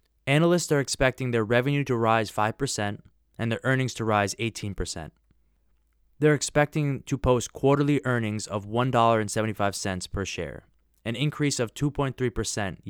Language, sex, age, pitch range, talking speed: English, male, 20-39, 100-145 Hz, 130 wpm